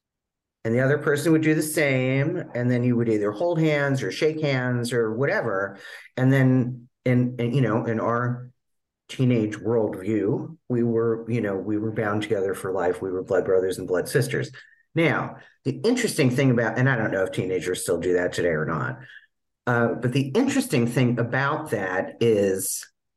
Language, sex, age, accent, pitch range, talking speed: English, male, 40-59, American, 115-140 Hz, 185 wpm